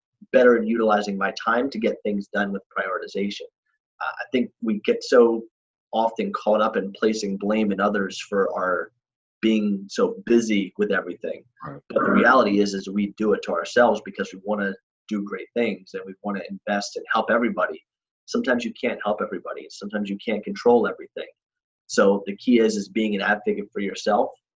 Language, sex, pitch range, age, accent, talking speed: English, male, 100-125 Hz, 30-49, American, 190 wpm